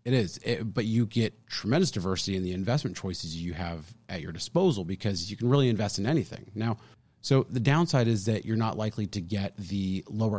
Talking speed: 215 wpm